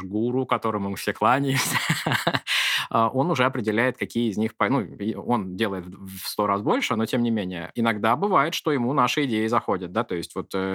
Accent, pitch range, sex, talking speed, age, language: native, 110-145 Hz, male, 185 wpm, 20-39, Russian